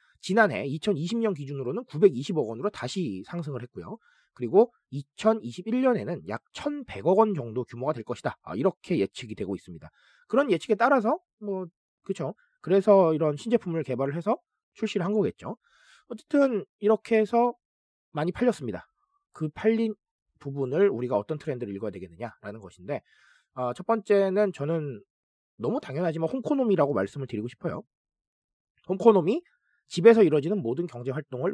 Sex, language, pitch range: male, Korean, 150-220 Hz